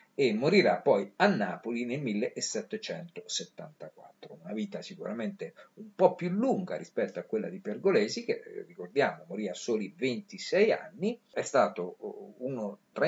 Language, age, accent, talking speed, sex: Italian, 50-69, native, 140 wpm, male